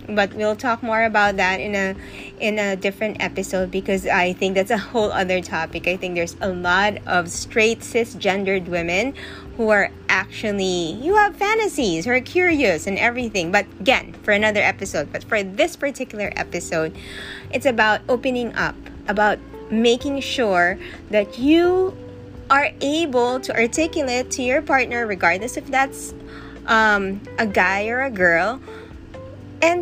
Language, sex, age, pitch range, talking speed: English, female, 20-39, 185-255 Hz, 155 wpm